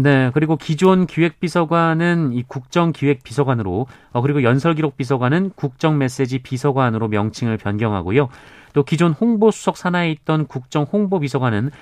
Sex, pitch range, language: male, 125-165 Hz, Korean